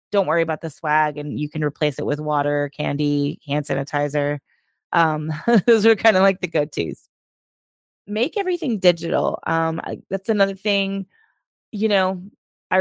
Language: English